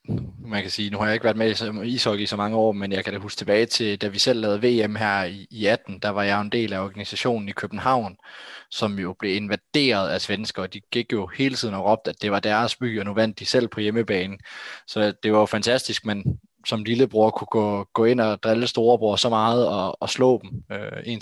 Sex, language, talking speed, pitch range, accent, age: male, Danish, 255 wpm, 100-120 Hz, native, 20-39